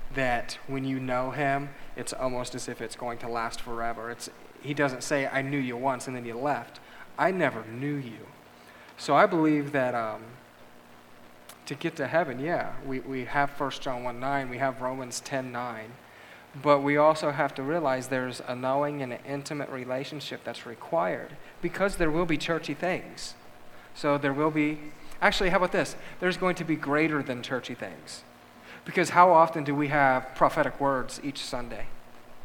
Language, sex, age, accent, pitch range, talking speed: English, male, 40-59, American, 125-160 Hz, 185 wpm